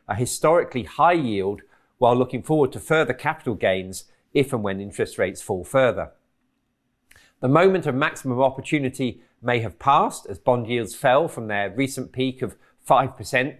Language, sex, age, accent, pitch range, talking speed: English, male, 40-59, British, 120-150 Hz, 160 wpm